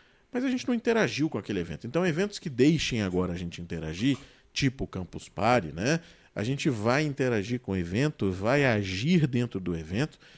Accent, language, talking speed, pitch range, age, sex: Brazilian, Portuguese, 190 wpm, 105-155 Hz, 40-59, male